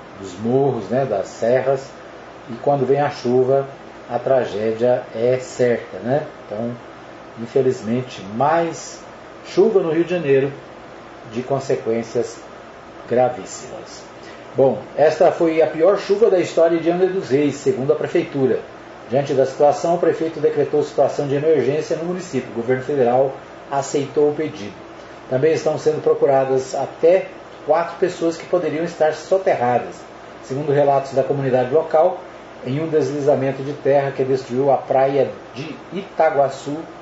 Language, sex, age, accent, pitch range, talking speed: Portuguese, male, 40-59, Brazilian, 130-165 Hz, 140 wpm